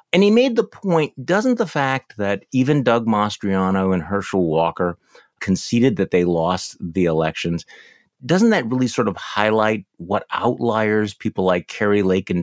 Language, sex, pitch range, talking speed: English, male, 95-135 Hz, 165 wpm